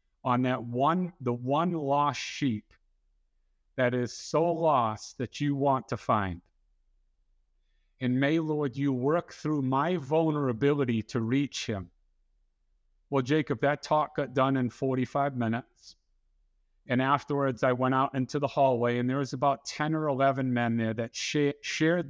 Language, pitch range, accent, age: English, 105-140 Hz, American, 50-69